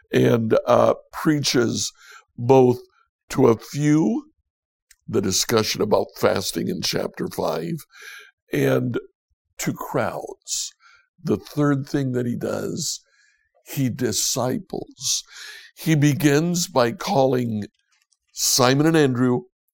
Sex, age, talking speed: male, 60-79, 95 wpm